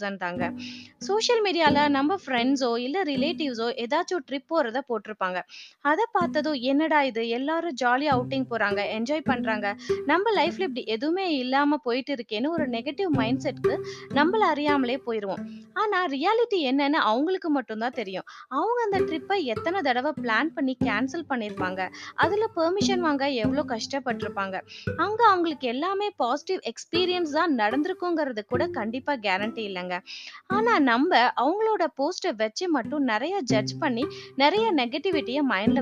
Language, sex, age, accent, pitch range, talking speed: Tamil, female, 20-39, native, 240-340 Hz, 40 wpm